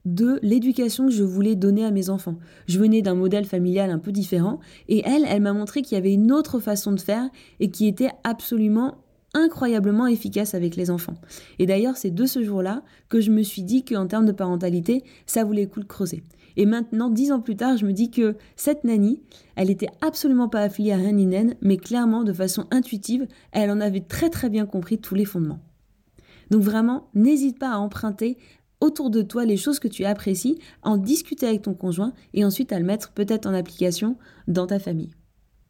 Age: 20-39